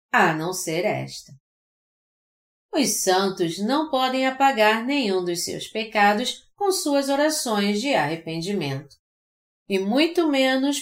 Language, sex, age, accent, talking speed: Portuguese, female, 40-59, Brazilian, 115 wpm